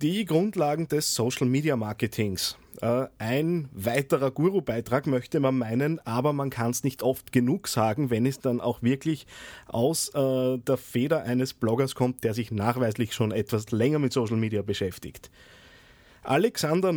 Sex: male